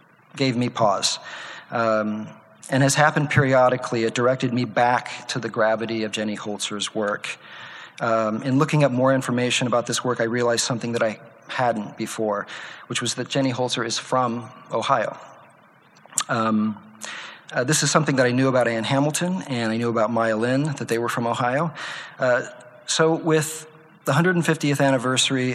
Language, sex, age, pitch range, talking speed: English, male, 40-59, 115-135 Hz, 170 wpm